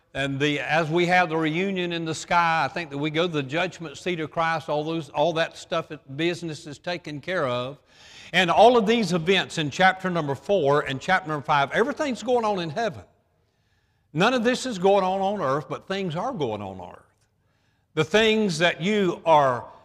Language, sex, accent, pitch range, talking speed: English, male, American, 150-190 Hz, 210 wpm